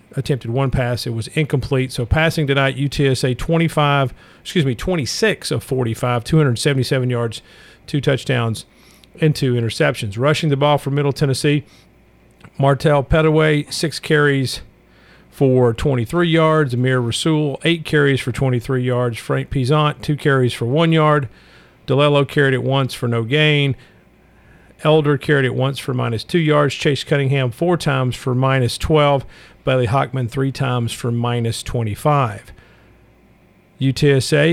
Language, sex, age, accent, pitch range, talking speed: English, male, 50-69, American, 125-150 Hz, 140 wpm